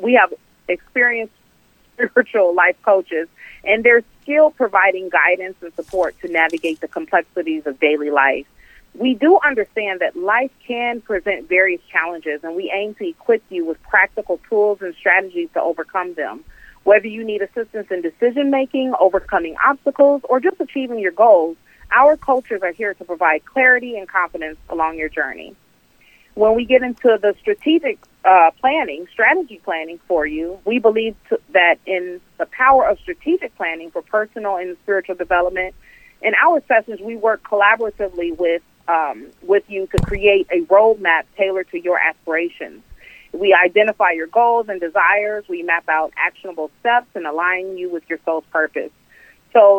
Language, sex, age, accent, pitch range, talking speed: English, female, 30-49, American, 170-230 Hz, 160 wpm